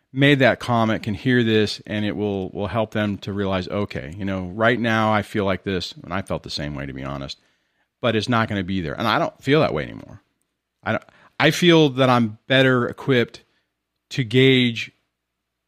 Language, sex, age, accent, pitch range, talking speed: English, male, 40-59, American, 90-120 Hz, 215 wpm